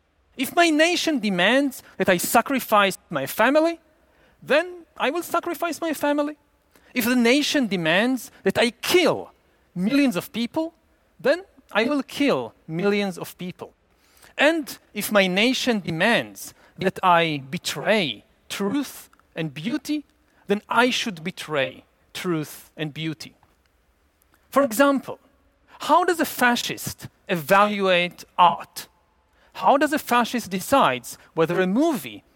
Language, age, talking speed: English, 40-59, 120 wpm